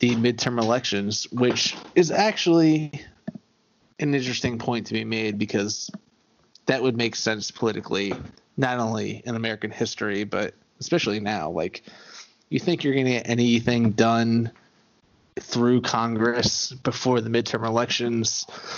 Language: English